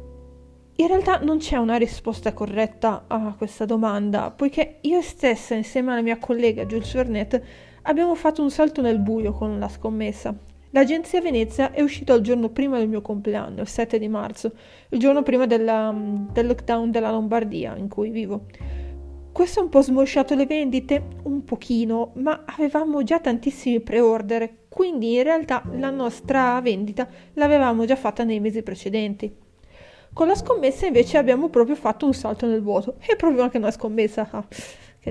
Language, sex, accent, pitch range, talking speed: Italian, female, native, 220-280 Hz, 160 wpm